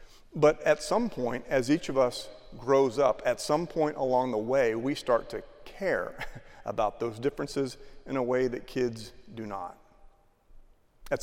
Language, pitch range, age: English, 115-145 Hz, 40-59